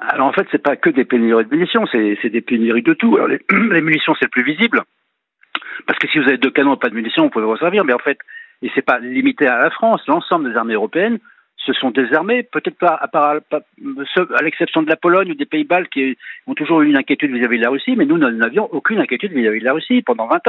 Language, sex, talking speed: French, male, 270 wpm